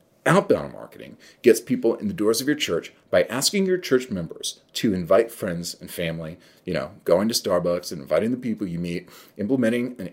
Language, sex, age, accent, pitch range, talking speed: English, male, 30-49, American, 95-125 Hz, 195 wpm